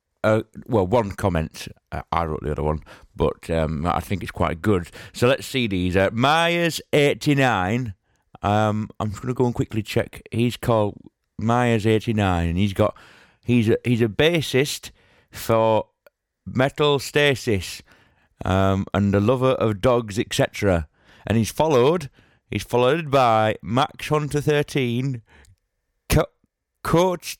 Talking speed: 140 wpm